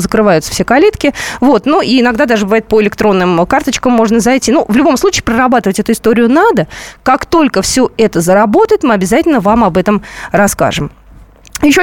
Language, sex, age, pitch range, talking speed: Russian, female, 20-39, 200-290 Hz, 170 wpm